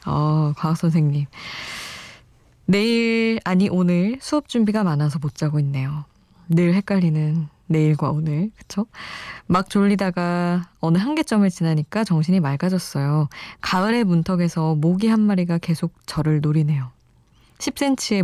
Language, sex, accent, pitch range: Korean, female, native, 155-195 Hz